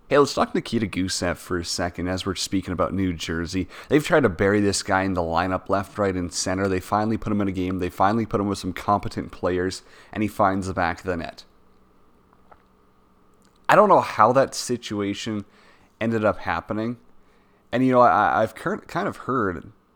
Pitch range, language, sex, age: 95-115 Hz, English, male, 30-49